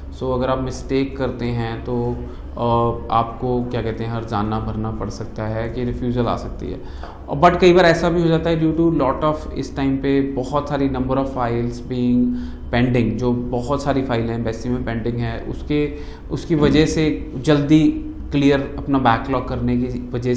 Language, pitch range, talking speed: Punjabi, 120-140 Hz, 185 wpm